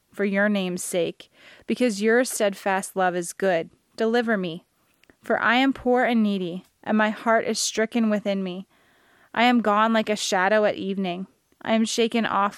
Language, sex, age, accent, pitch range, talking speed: English, female, 20-39, American, 195-230 Hz, 175 wpm